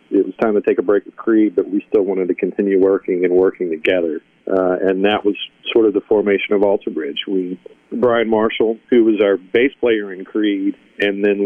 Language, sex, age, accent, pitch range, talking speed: English, male, 40-59, American, 95-120 Hz, 215 wpm